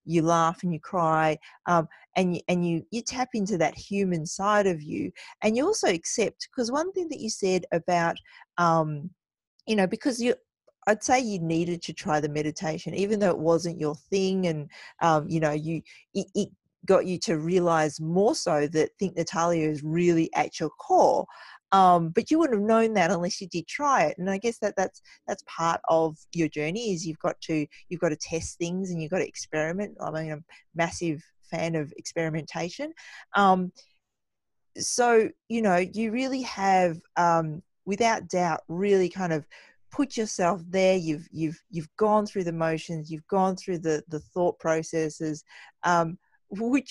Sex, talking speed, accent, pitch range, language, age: female, 185 wpm, Australian, 165-210 Hz, English, 40-59